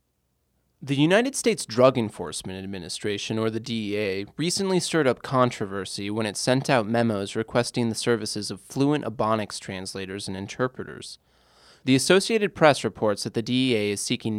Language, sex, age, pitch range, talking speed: English, male, 20-39, 100-140 Hz, 150 wpm